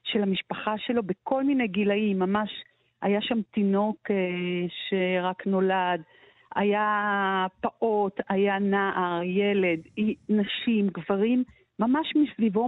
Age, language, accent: 50-69, Hebrew, native